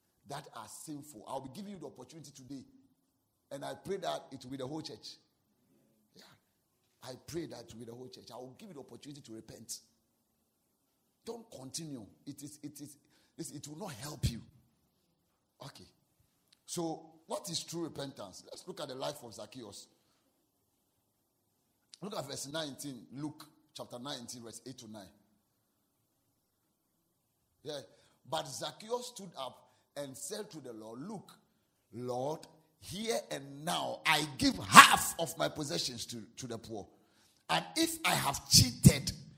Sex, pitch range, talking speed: male, 110-150 Hz, 155 wpm